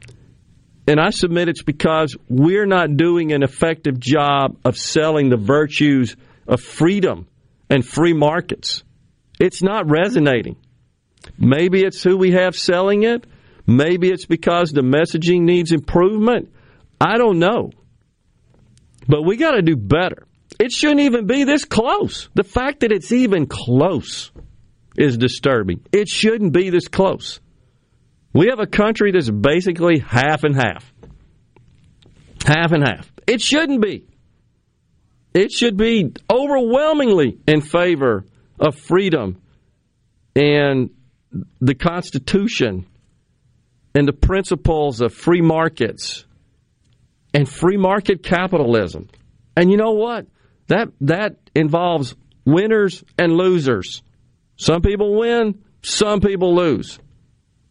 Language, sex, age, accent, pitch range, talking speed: English, male, 50-69, American, 130-190 Hz, 120 wpm